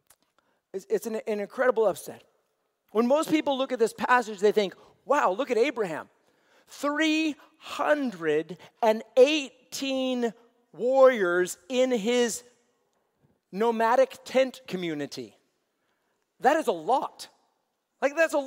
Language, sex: English, male